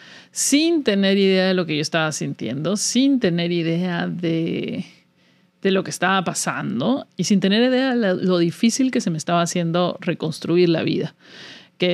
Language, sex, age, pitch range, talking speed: Spanish, male, 40-59, 170-200 Hz, 170 wpm